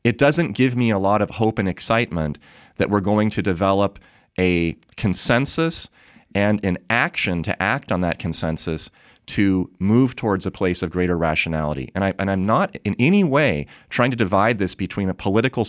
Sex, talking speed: male, 180 wpm